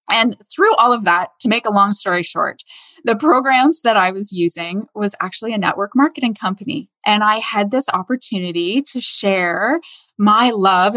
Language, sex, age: English, female, 20-39